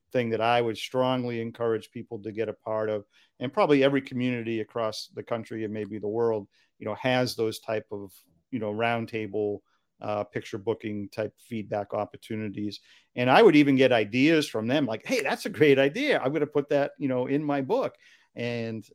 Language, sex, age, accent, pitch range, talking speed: English, male, 50-69, American, 115-140 Hz, 200 wpm